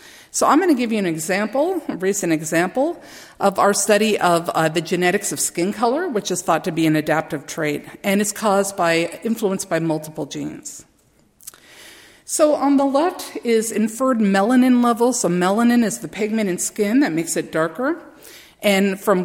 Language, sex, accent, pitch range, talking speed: English, female, American, 175-250 Hz, 180 wpm